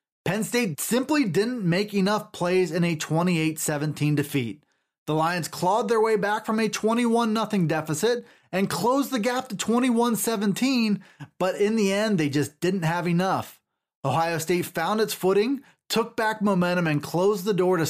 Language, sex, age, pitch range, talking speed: English, male, 30-49, 165-220 Hz, 165 wpm